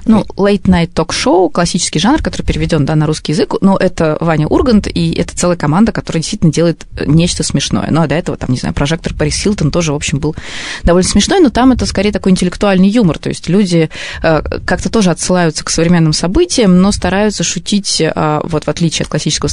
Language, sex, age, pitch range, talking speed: Russian, female, 20-39, 160-195 Hz, 200 wpm